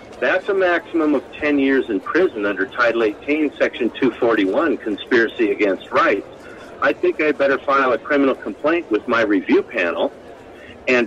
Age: 50-69